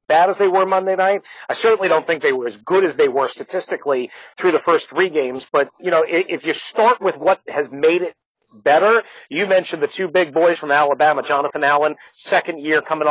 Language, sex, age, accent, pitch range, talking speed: English, male, 40-59, American, 145-190 Hz, 220 wpm